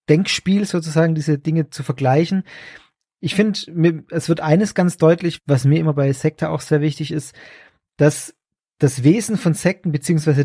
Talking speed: 160 wpm